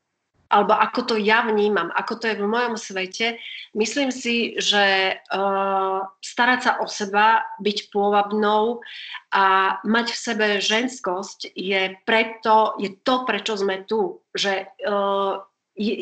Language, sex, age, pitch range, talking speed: Slovak, female, 30-49, 200-235 Hz, 130 wpm